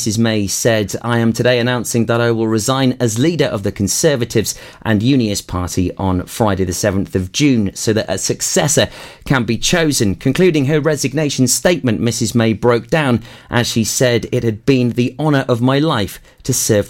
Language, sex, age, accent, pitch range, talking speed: English, male, 30-49, British, 105-135 Hz, 190 wpm